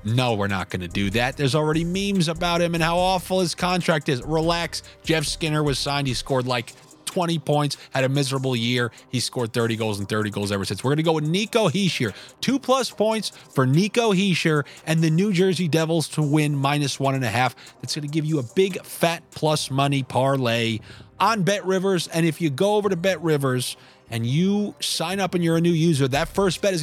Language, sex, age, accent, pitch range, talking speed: English, male, 30-49, American, 125-175 Hz, 220 wpm